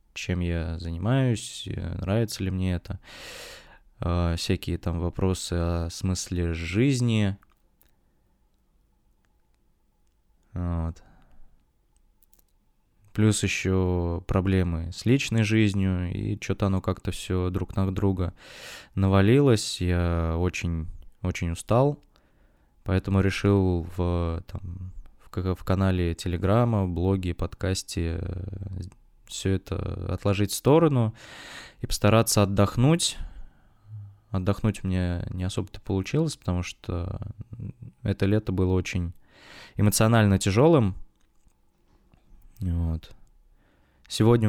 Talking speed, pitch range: 85 wpm, 90-105 Hz